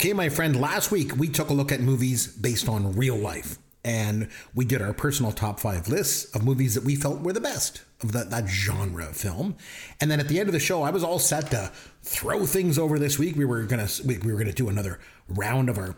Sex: male